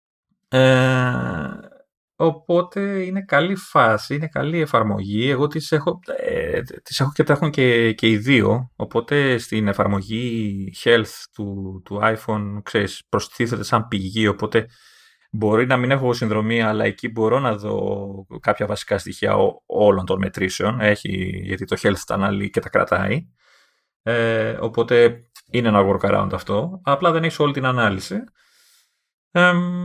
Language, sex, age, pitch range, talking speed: Greek, male, 20-39, 100-150 Hz, 145 wpm